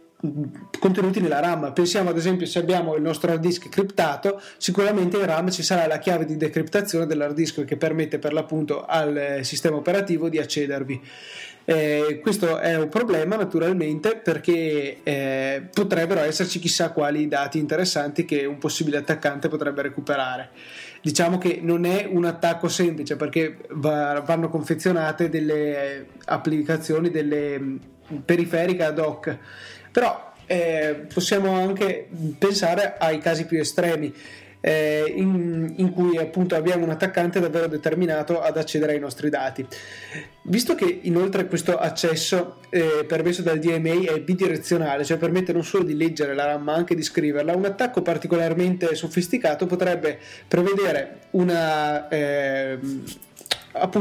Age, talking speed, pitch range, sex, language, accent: 20-39, 135 wpm, 150-180 Hz, male, Italian, native